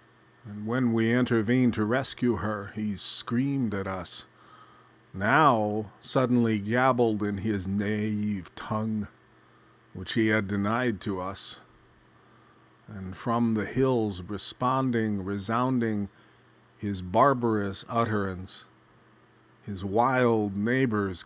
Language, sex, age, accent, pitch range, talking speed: English, male, 40-59, American, 105-125 Hz, 100 wpm